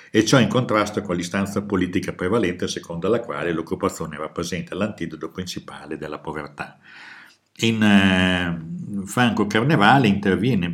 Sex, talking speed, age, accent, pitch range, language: male, 125 wpm, 60-79, native, 85-105 Hz, Italian